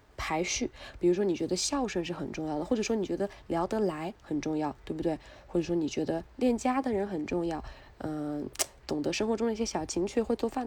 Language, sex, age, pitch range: Chinese, female, 20-39, 170-230 Hz